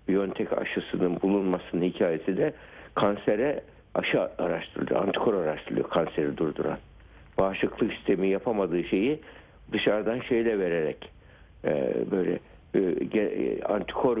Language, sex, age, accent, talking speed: Turkish, male, 60-79, native, 90 wpm